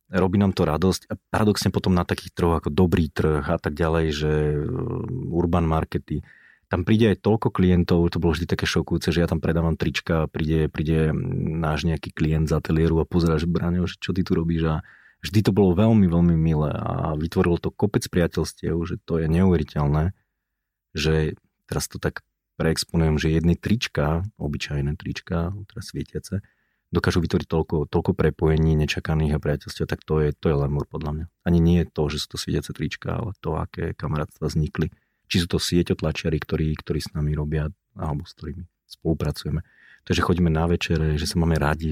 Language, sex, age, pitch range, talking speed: Slovak, male, 30-49, 80-90 Hz, 190 wpm